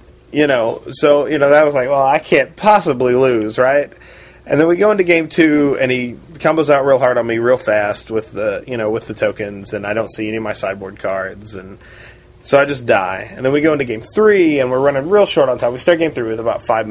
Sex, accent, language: male, American, English